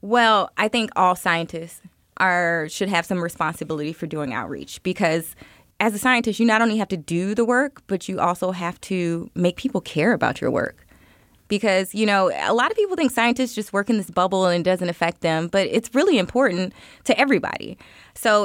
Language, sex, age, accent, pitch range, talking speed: English, female, 20-39, American, 175-230 Hz, 200 wpm